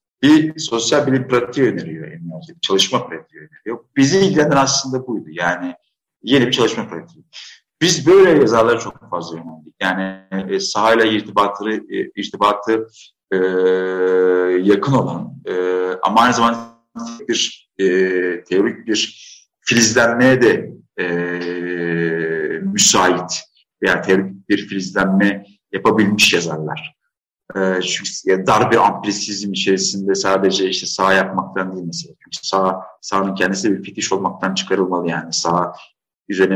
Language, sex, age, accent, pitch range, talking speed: Turkish, male, 50-69, native, 95-115 Hz, 120 wpm